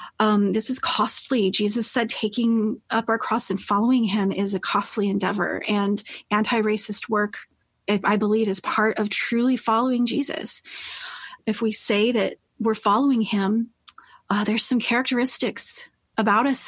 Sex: female